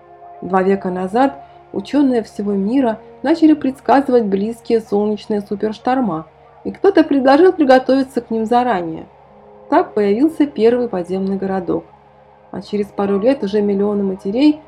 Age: 30-49